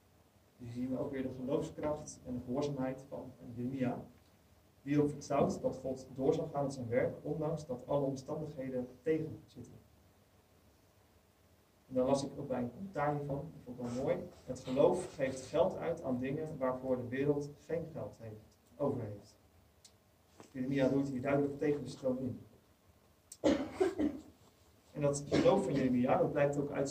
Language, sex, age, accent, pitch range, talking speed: Dutch, male, 30-49, Dutch, 120-145 Hz, 165 wpm